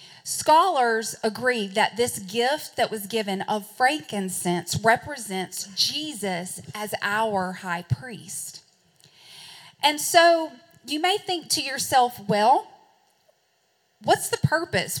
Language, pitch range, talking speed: English, 195-265 Hz, 110 wpm